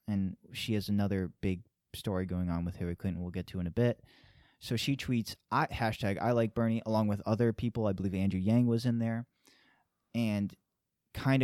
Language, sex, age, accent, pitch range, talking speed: English, male, 20-39, American, 95-115 Hz, 195 wpm